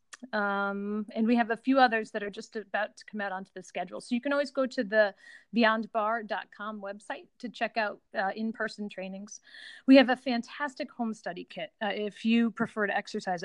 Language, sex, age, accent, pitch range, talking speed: English, female, 40-59, American, 200-235 Hz, 200 wpm